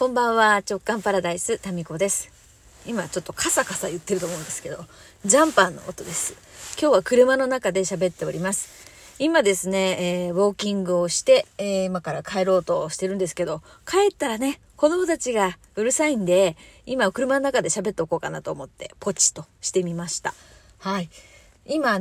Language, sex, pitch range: Japanese, female, 185-260 Hz